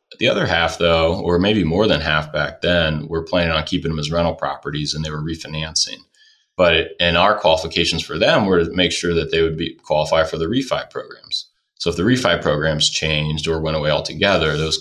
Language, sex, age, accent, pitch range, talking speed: English, male, 20-39, American, 80-90 Hz, 215 wpm